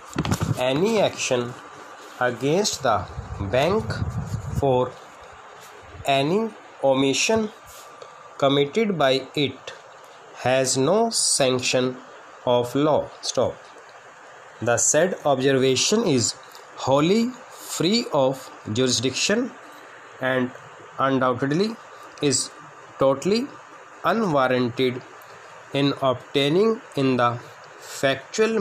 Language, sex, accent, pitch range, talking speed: English, male, Indian, 125-155 Hz, 75 wpm